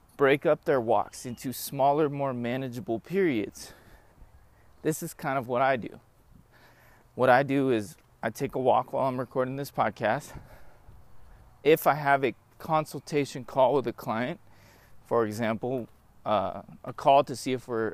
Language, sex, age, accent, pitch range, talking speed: English, male, 30-49, American, 110-145 Hz, 155 wpm